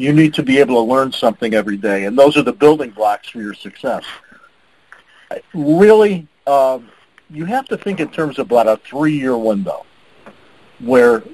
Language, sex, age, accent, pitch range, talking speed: English, male, 50-69, American, 125-155 Hz, 175 wpm